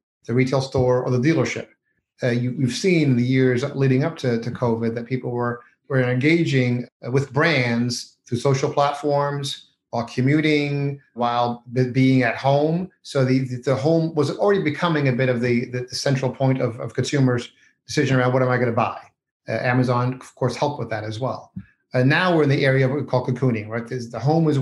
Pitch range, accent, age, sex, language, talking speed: 125-145 Hz, American, 40-59, male, English, 210 wpm